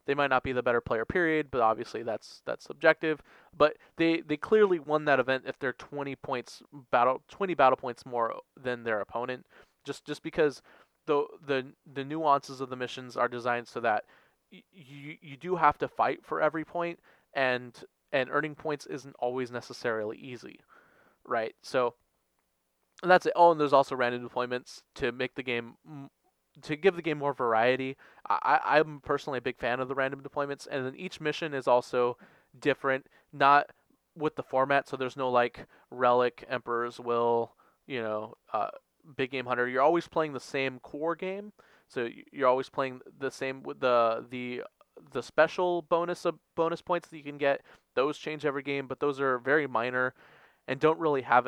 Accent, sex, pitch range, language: American, male, 125-150 Hz, English